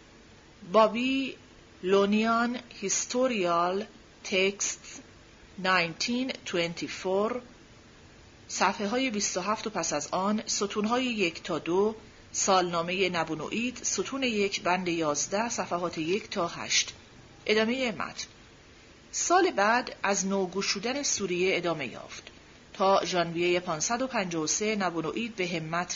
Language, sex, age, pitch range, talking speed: Persian, female, 40-59, 170-215 Hz, 95 wpm